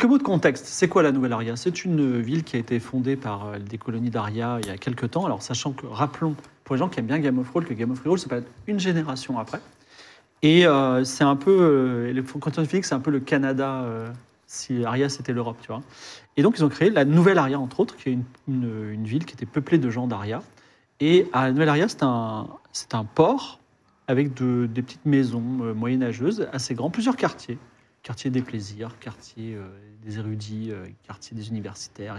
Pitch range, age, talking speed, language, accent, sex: 120-155 Hz, 40-59, 220 wpm, French, French, male